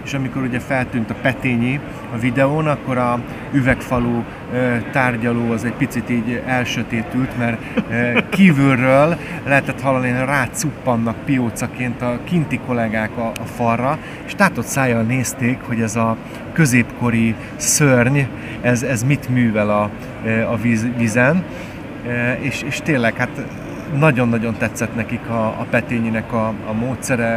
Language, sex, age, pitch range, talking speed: Hungarian, male, 30-49, 115-130 Hz, 130 wpm